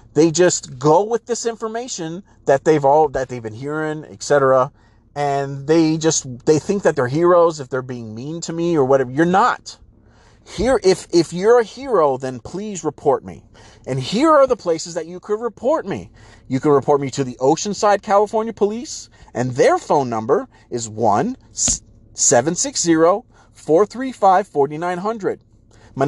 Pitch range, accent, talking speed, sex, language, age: 115-180 Hz, American, 165 wpm, male, English, 30-49